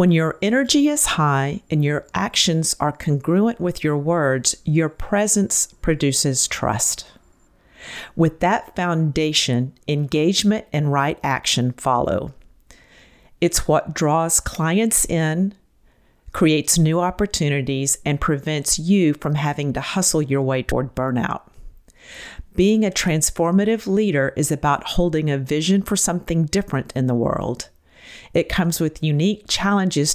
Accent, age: American, 50-69